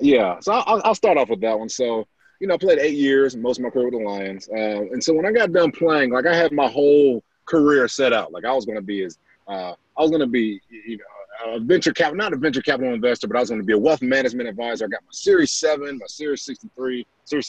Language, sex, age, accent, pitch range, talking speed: English, male, 30-49, American, 120-180 Hz, 280 wpm